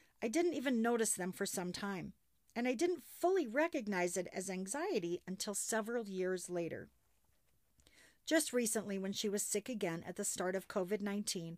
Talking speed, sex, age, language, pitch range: 165 wpm, female, 50-69, English, 185-245 Hz